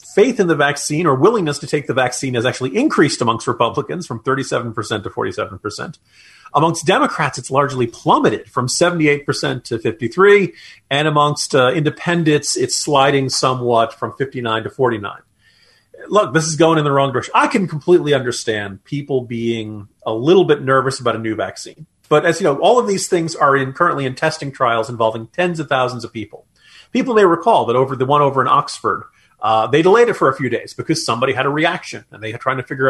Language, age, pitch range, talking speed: English, 40-59, 125-160 Hz, 200 wpm